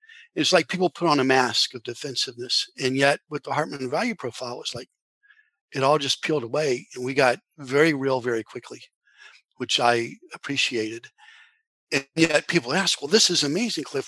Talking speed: 185 wpm